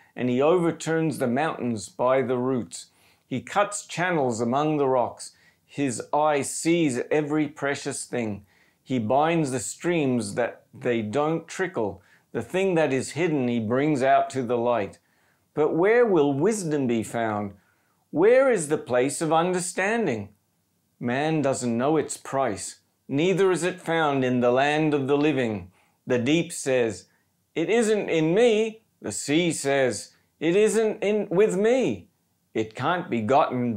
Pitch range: 125-170 Hz